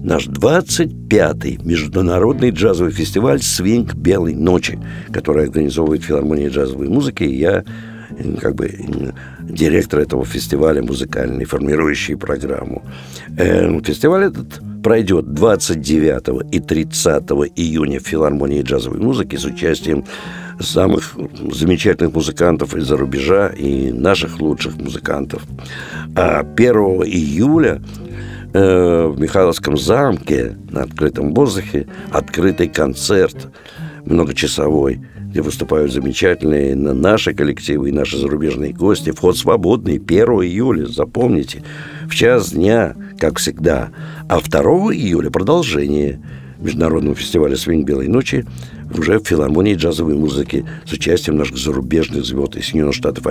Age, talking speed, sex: 60-79, 110 wpm, male